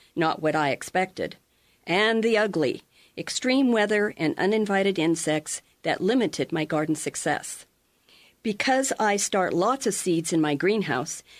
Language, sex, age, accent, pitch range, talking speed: English, female, 50-69, American, 175-225 Hz, 135 wpm